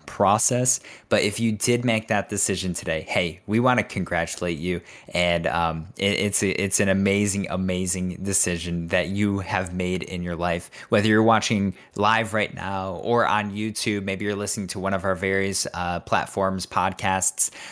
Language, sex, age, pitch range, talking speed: English, male, 20-39, 95-115 Hz, 175 wpm